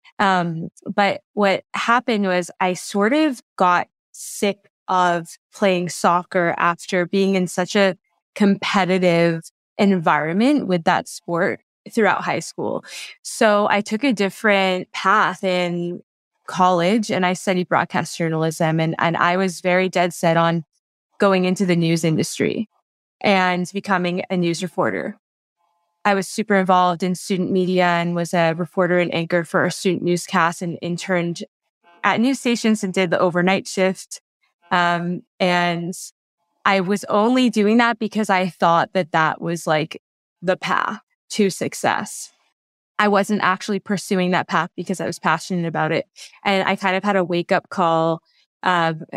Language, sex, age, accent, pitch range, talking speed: English, female, 20-39, American, 175-200 Hz, 150 wpm